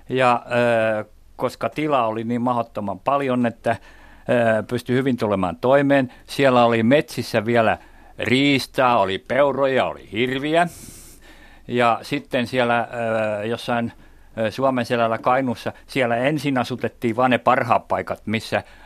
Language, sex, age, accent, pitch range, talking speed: Finnish, male, 50-69, native, 110-130 Hz, 125 wpm